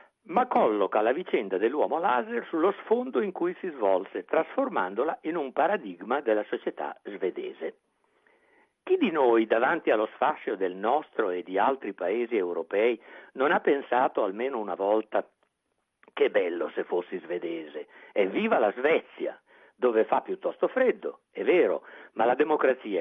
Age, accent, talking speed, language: 60-79, native, 145 wpm, Italian